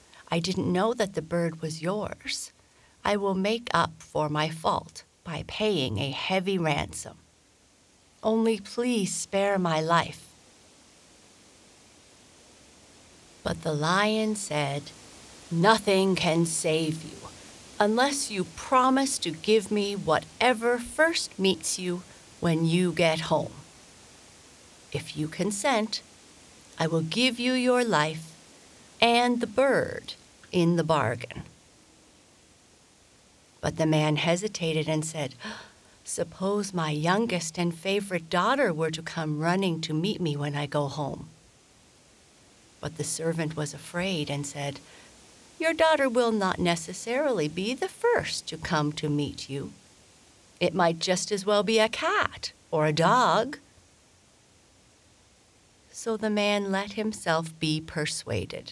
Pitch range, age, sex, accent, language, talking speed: 155-210 Hz, 50-69, female, American, English, 125 wpm